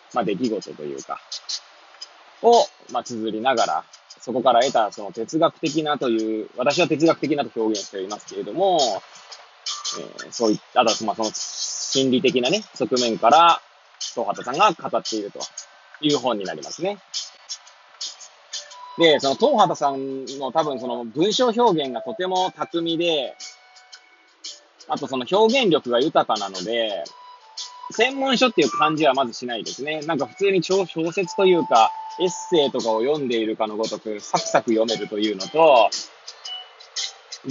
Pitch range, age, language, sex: 125-195 Hz, 20-39, Japanese, male